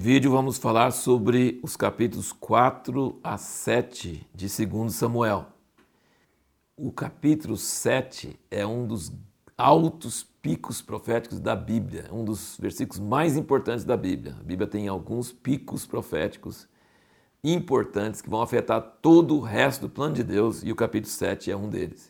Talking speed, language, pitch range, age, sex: 145 wpm, Portuguese, 105-135 Hz, 60-79, male